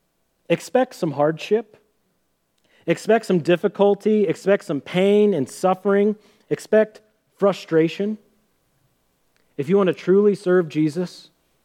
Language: English